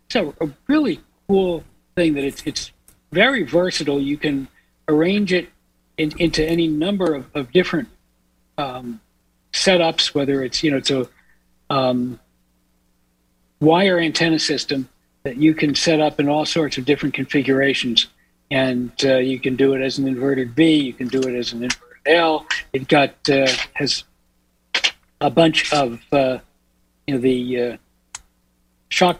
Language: English